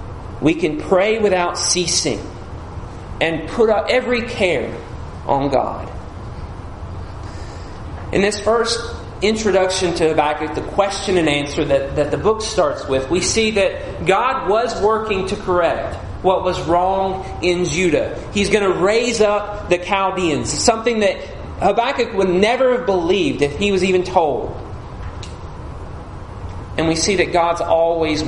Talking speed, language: 140 wpm, English